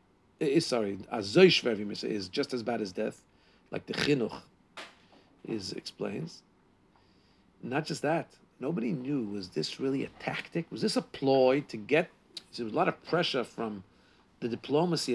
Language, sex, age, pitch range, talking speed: English, male, 50-69, 135-200 Hz, 150 wpm